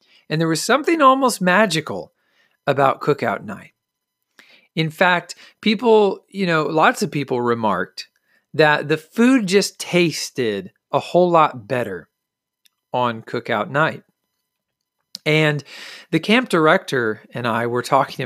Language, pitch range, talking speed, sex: English, 130-190 Hz, 125 wpm, male